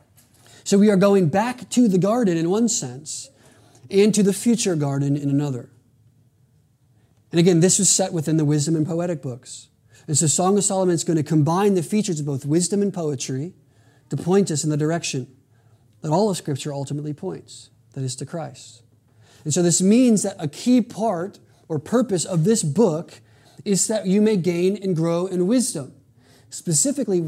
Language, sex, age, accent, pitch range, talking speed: English, male, 30-49, American, 135-190 Hz, 185 wpm